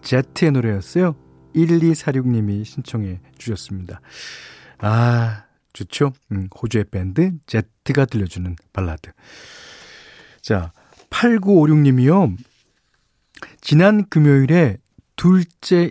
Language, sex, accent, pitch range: Korean, male, native, 100-150 Hz